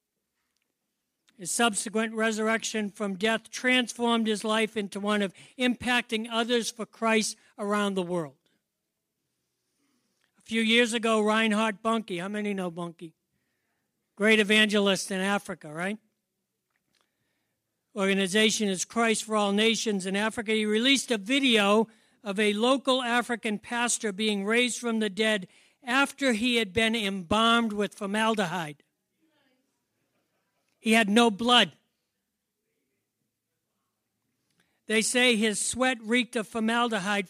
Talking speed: 115 wpm